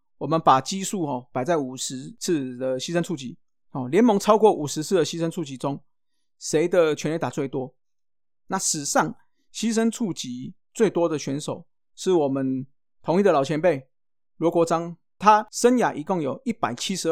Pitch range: 140-185 Hz